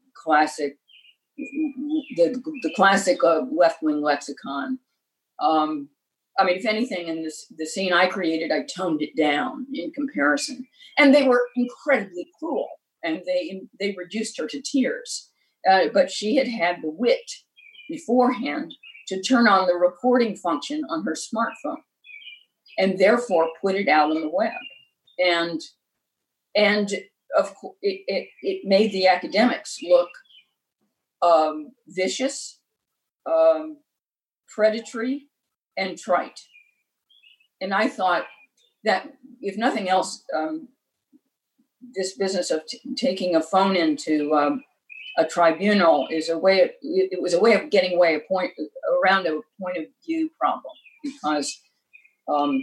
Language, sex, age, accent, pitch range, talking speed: English, female, 50-69, American, 175-280 Hz, 135 wpm